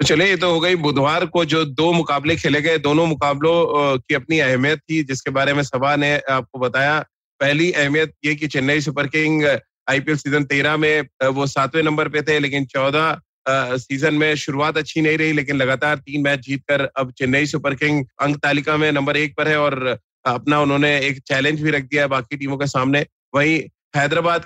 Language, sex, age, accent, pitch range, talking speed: Hindi, male, 30-49, native, 140-155 Hz, 190 wpm